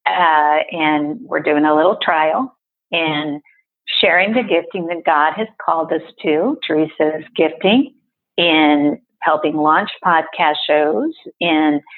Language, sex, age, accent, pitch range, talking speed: English, female, 50-69, American, 155-190 Hz, 125 wpm